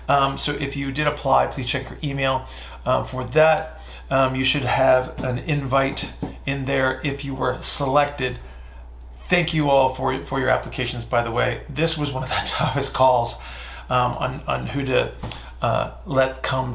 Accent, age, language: American, 40-59, English